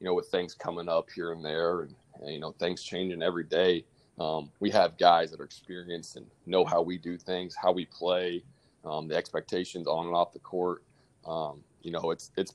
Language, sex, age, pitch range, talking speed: English, male, 20-39, 85-95 Hz, 220 wpm